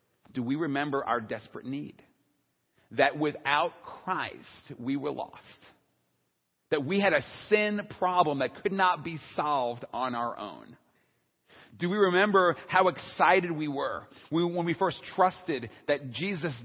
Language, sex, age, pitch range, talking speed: English, male, 40-59, 125-185 Hz, 140 wpm